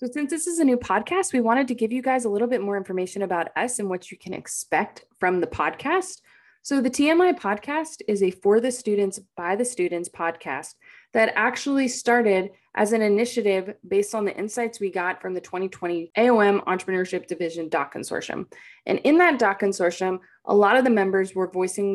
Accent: American